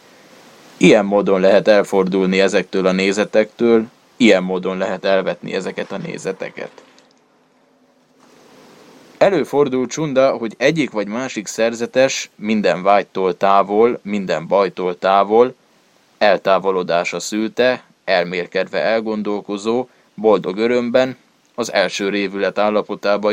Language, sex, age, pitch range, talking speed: Hungarian, male, 20-39, 100-120 Hz, 95 wpm